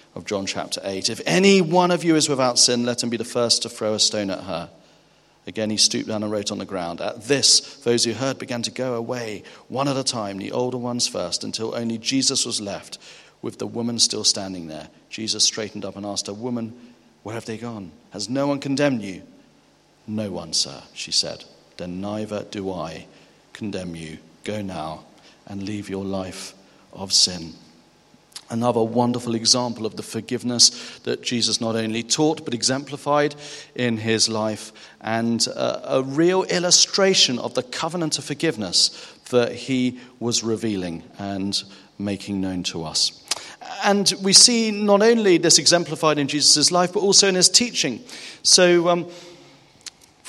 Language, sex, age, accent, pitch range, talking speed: English, male, 40-59, British, 110-150 Hz, 175 wpm